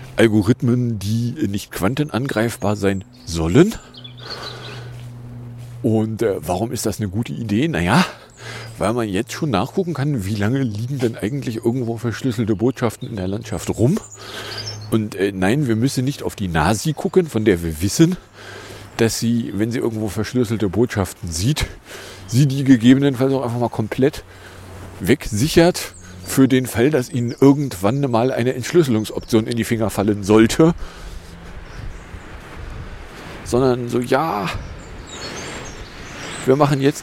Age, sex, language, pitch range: 40-59, male, English, 105-125 Hz